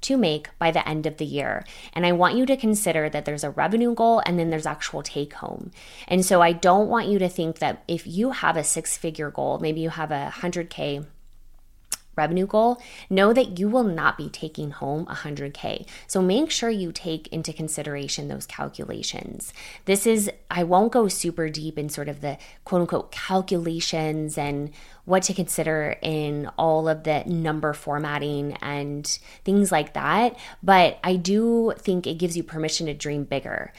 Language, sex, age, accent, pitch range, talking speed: English, female, 20-39, American, 150-190 Hz, 185 wpm